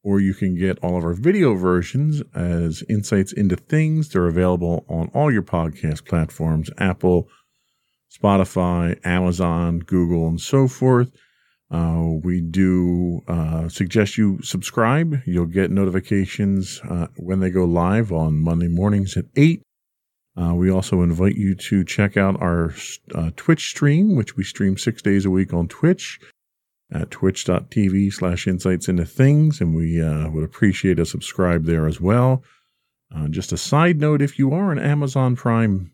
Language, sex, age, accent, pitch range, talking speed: English, male, 50-69, American, 85-115 Hz, 155 wpm